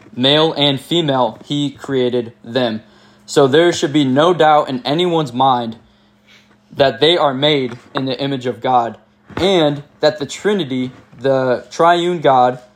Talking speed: 145 wpm